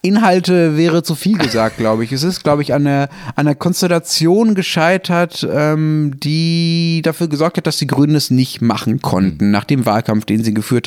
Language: German